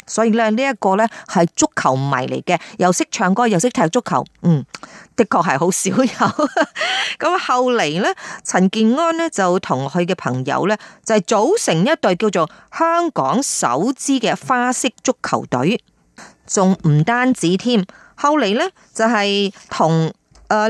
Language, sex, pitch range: Chinese, female, 170-255 Hz